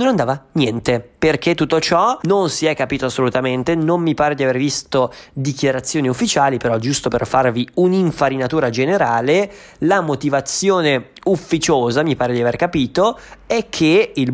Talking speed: 150 wpm